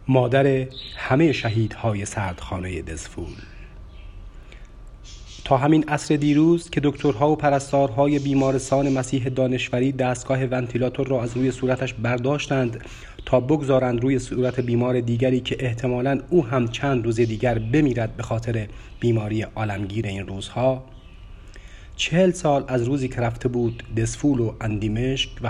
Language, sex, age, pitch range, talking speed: Persian, male, 30-49, 105-140 Hz, 130 wpm